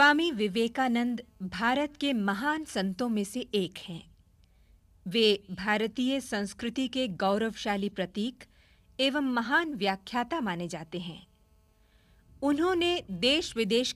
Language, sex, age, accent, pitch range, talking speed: Hindi, female, 50-69, native, 190-255 Hz, 110 wpm